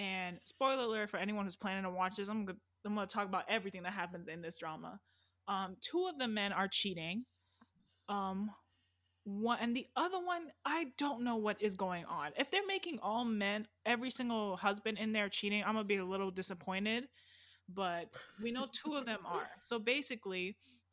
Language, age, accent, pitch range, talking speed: English, 20-39, American, 185-220 Hz, 195 wpm